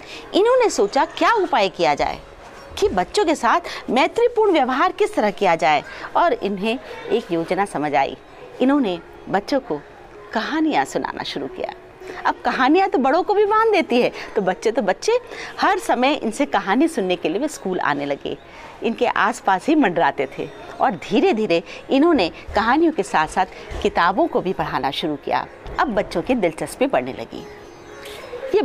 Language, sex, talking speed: Hindi, female, 165 wpm